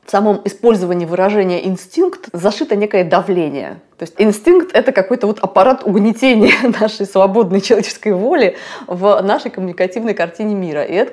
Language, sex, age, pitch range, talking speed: Russian, female, 20-39, 175-220 Hz, 140 wpm